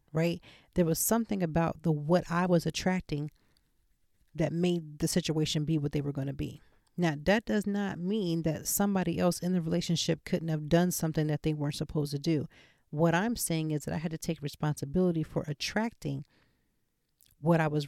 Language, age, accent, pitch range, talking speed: English, 40-59, American, 155-180 Hz, 190 wpm